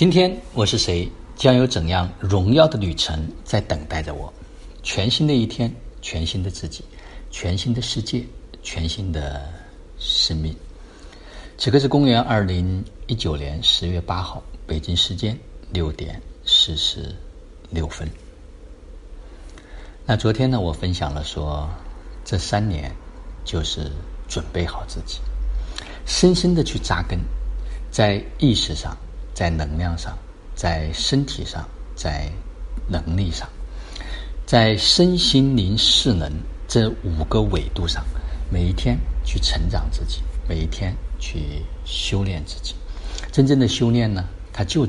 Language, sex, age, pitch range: Chinese, male, 50-69, 75-105 Hz